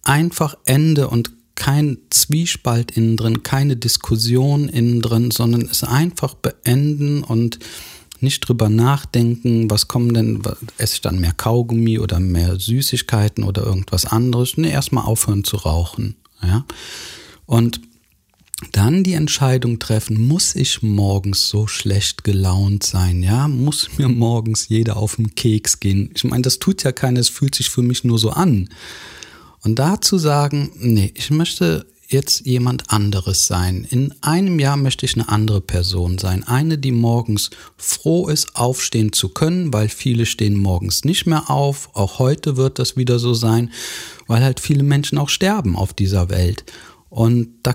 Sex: male